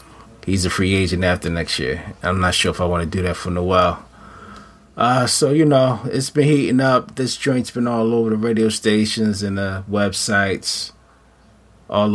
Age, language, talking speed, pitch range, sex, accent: 30-49, English, 190 wpm, 95-115 Hz, male, American